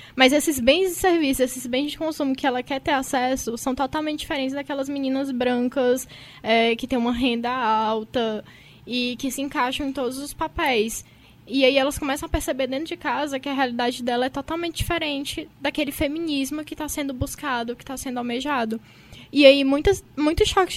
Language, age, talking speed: Portuguese, 10-29, 190 wpm